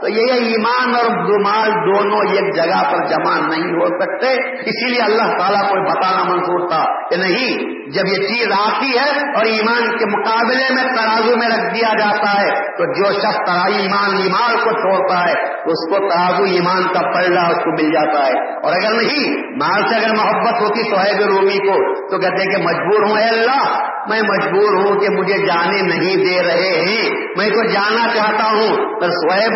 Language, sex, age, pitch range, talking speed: Urdu, male, 50-69, 190-230 Hz, 185 wpm